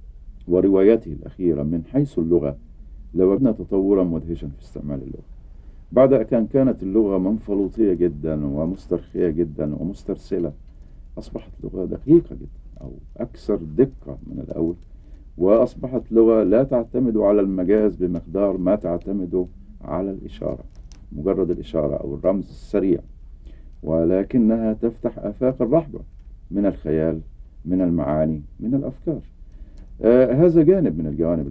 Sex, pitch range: male, 70-95 Hz